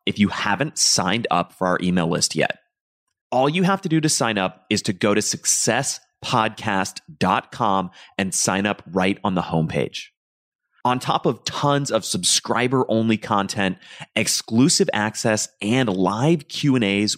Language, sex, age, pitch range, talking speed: English, male, 30-49, 95-120 Hz, 145 wpm